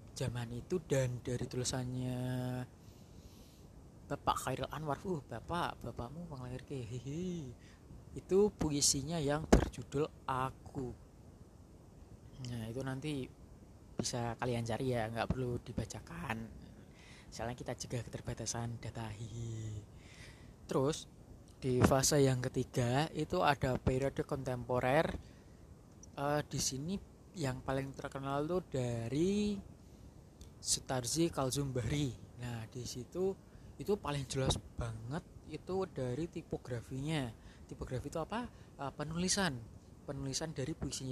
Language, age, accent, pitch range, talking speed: Indonesian, 20-39, native, 120-145 Hz, 100 wpm